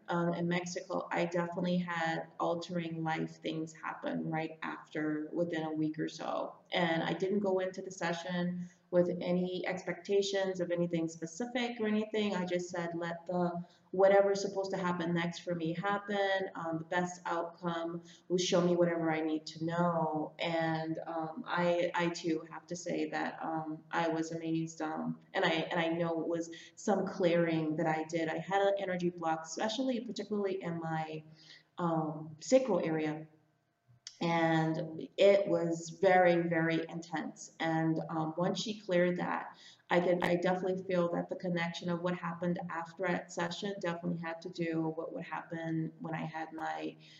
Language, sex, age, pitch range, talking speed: English, female, 30-49, 160-180 Hz, 170 wpm